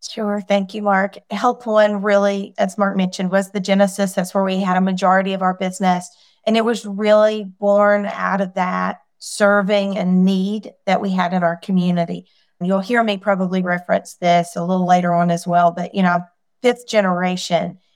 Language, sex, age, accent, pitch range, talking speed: English, female, 30-49, American, 175-200 Hz, 185 wpm